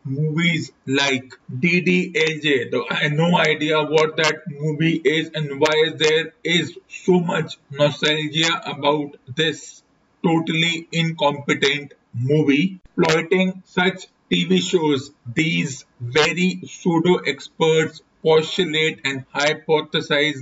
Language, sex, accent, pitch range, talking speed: English, male, Indian, 145-170 Hz, 105 wpm